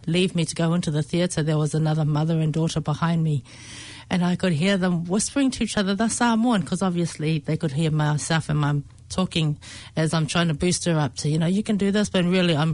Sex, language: female, English